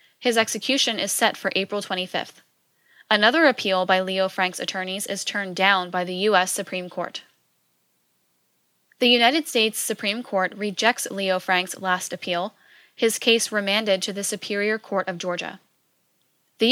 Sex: female